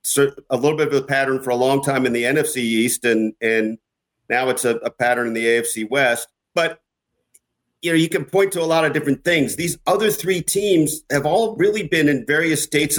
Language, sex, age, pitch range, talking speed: English, male, 50-69, 125-155 Hz, 220 wpm